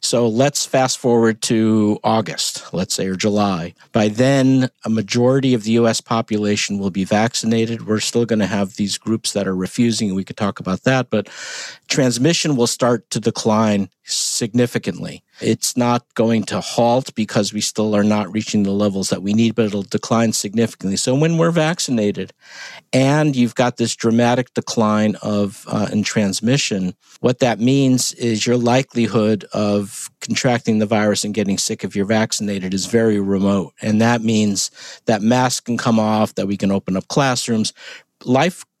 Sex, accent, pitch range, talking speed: male, American, 105-125 Hz, 170 wpm